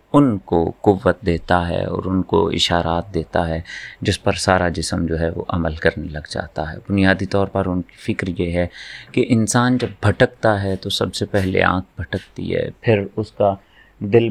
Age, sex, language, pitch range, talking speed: 30-49, male, Urdu, 85-105 Hz, 195 wpm